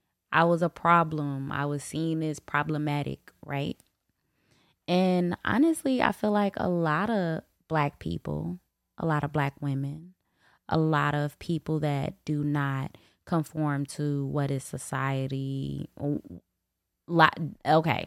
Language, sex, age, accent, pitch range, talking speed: English, female, 10-29, American, 135-165 Hz, 125 wpm